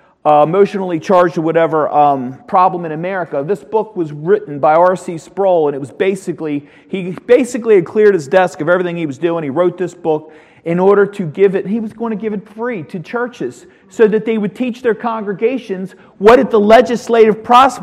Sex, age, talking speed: male, 40-59, 200 wpm